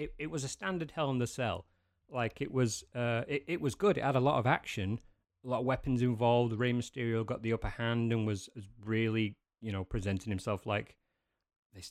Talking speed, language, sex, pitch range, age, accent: 220 wpm, English, male, 100-120 Hz, 30-49, British